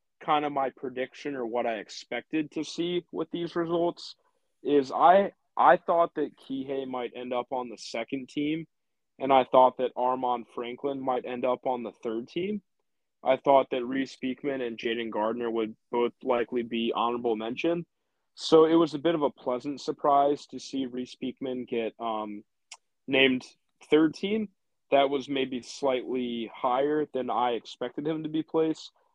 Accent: American